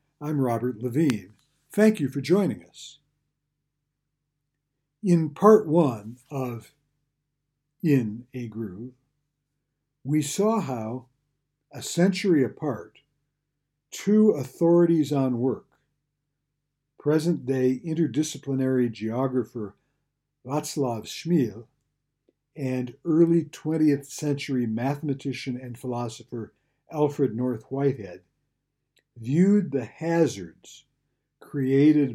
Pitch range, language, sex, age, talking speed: 125-145 Hz, English, male, 60-79, 80 wpm